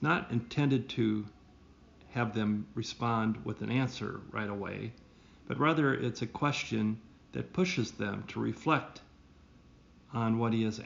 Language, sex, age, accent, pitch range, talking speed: English, male, 50-69, American, 105-125 Hz, 140 wpm